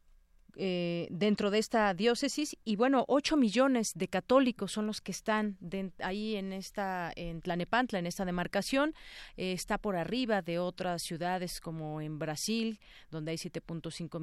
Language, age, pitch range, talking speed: Spanish, 40-59, 170-225 Hz, 155 wpm